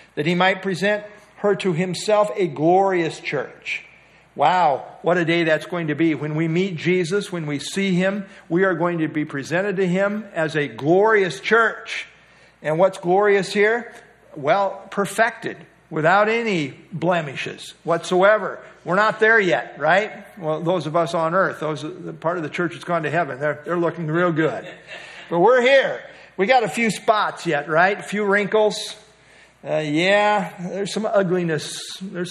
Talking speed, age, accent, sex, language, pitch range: 175 wpm, 50-69, American, male, English, 165-210 Hz